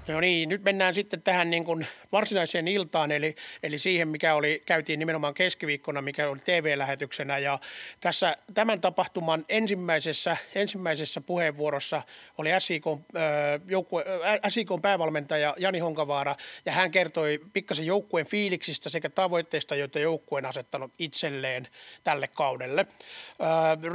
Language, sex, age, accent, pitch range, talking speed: Finnish, male, 30-49, native, 155-190 Hz, 125 wpm